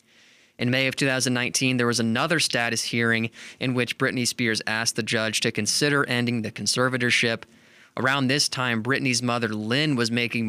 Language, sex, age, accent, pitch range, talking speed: English, male, 20-39, American, 115-135 Hz, 165 wpm